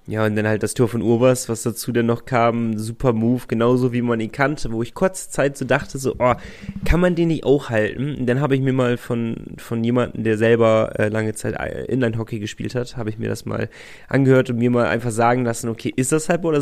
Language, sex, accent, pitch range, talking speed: German, male, German, 110-130 Hz, 250 wpm